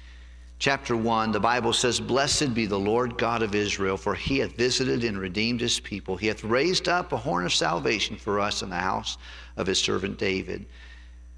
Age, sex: 50-69, male